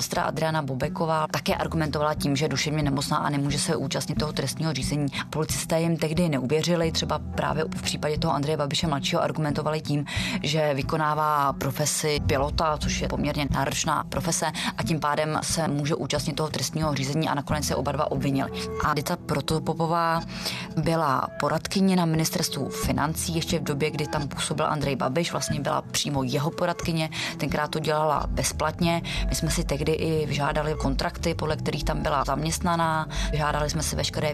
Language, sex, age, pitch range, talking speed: Czech, female, 20-39, 140-160 Hz, 165 wpm